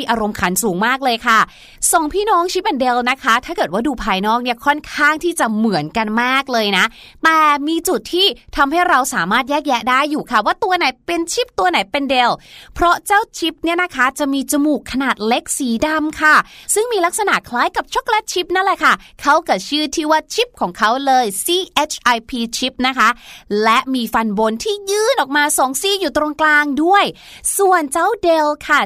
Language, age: Thai, 20-39